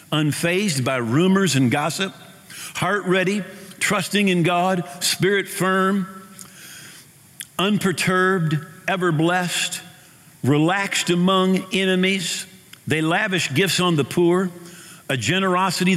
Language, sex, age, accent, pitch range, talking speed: English, male, 50-69, American, 155-195 Hz, 100 wpm